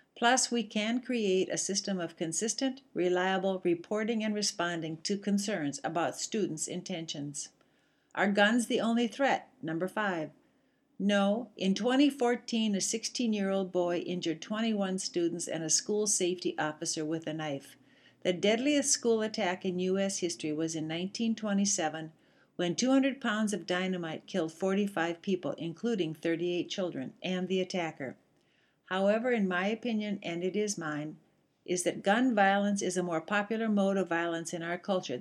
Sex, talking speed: female, 150 wpm